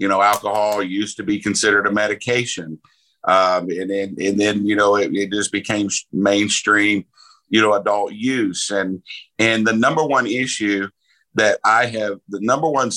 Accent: American